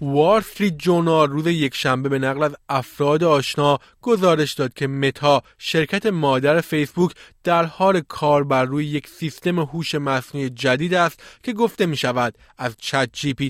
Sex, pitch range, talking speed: male, 140-175 Hz, 155 wpm